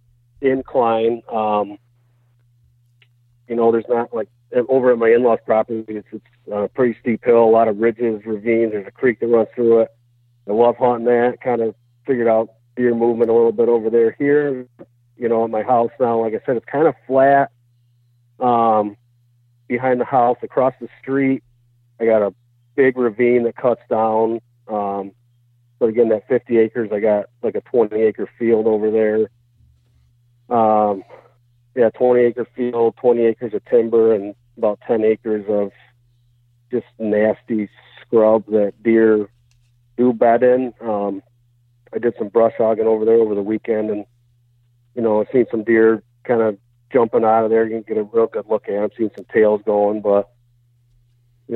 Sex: male